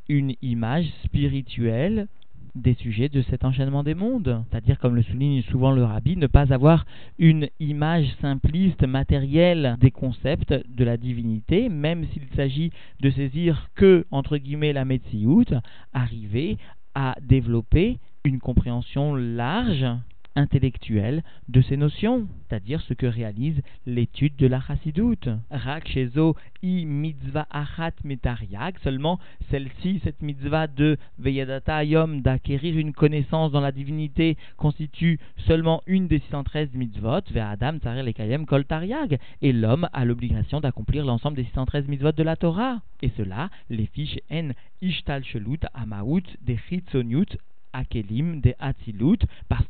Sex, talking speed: male, 135 wpm